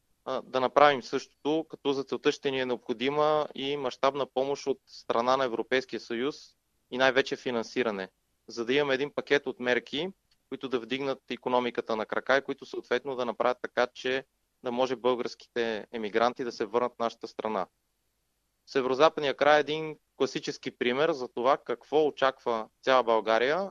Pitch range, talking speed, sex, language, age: 115-140 Hz, 160 wpm, male, Bulgarian, 20-39